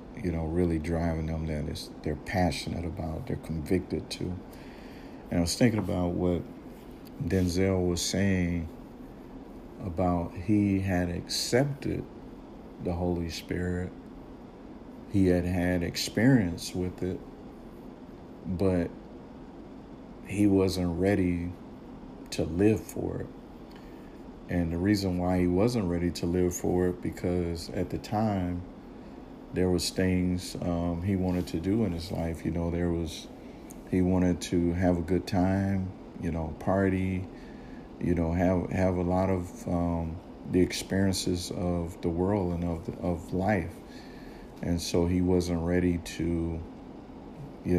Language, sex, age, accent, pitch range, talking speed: English, male, 50-69, American, 85-95 Hz, 135 wpm